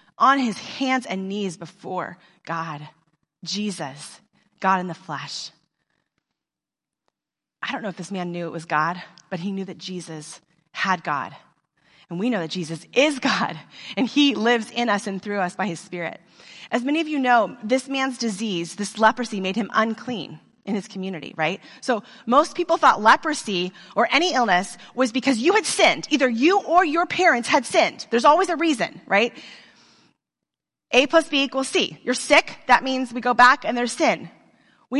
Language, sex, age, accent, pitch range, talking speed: English, female, 30-49, American, 180-270 Hz, 180 wpm